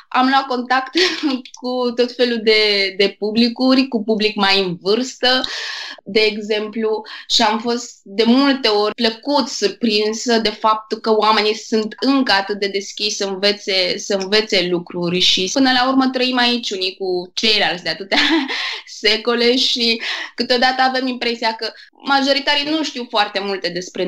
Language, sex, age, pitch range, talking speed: Romanian, female, 20-39, 195-255 Hz, 150 wpm